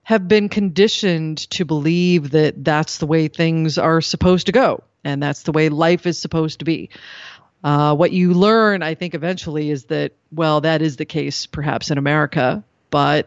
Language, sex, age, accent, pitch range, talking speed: English, female, 40-59, American, 150-180 Hz, 185 wpm